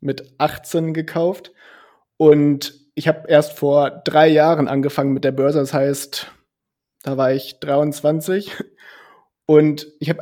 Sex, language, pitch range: male, German, 140-170 Hz